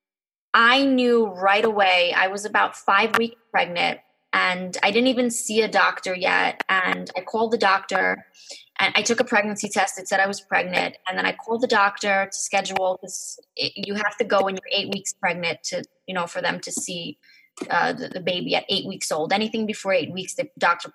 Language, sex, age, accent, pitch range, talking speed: English, female, 20-39, American, 190-230 Hz, 210 wpm